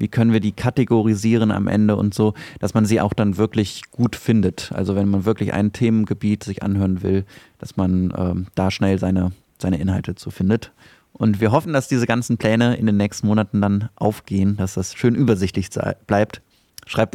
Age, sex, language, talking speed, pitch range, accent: 30-49, male, German, 190 wpm, 100-125 Hz, German